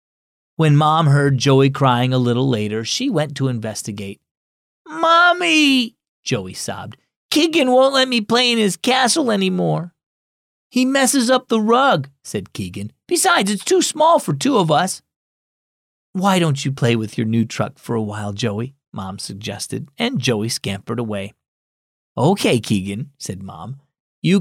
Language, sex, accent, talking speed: English, male, American, 150 wpm